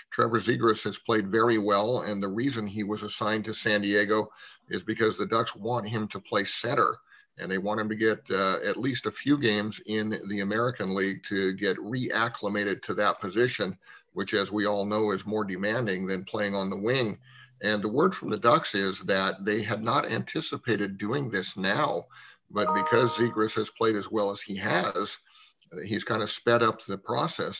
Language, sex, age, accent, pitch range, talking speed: English, male, 50-69, American, 100-115 Hz, 200 wpm